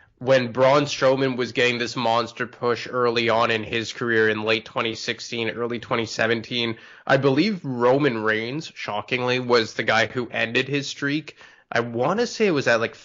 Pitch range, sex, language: 115-135 Hz, male, English